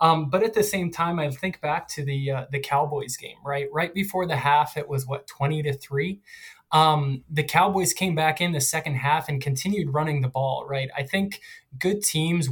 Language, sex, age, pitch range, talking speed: English, male, 20-39, 140-155 Hz, 215 wpm